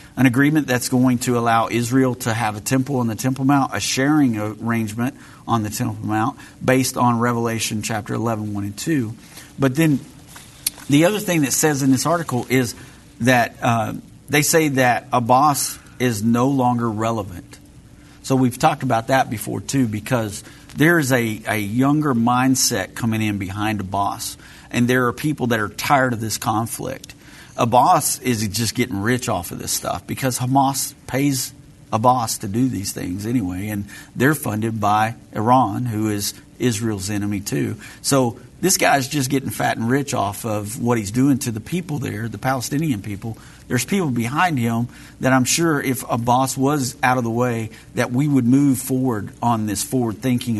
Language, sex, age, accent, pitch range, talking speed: English, male, 50-69, American, 115-135 Hz, 180 wpm